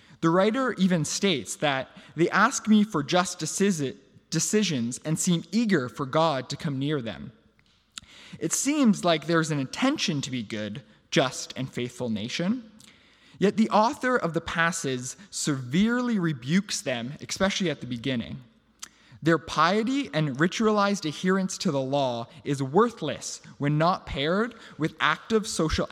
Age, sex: 20-39, male